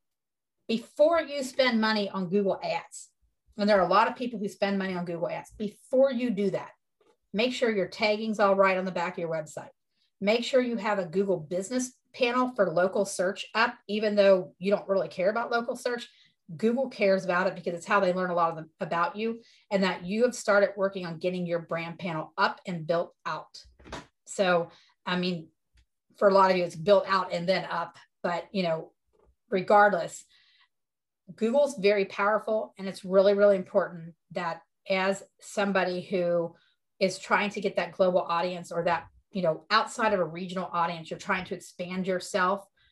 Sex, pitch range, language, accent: female, 180-220 Hz, English, American